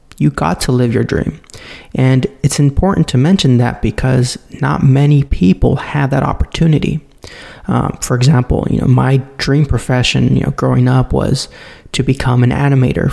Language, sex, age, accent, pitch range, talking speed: English, male, 30-49, American, 125-145 Hz, 165 wpm